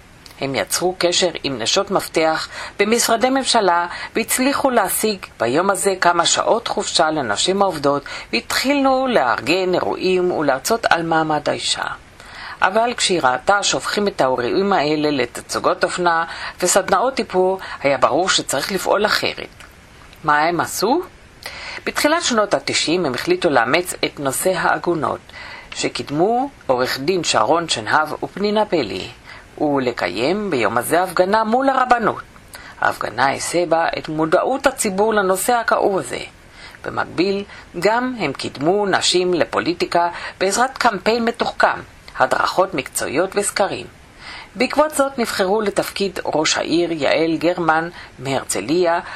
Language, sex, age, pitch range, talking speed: English, female, 50-69, 175-240 Hz, 115 wpm